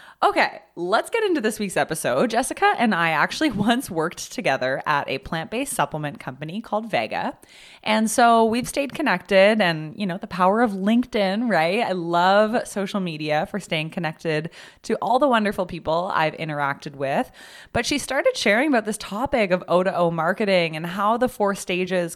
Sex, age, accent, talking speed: female, 20-39, American, 175 wpm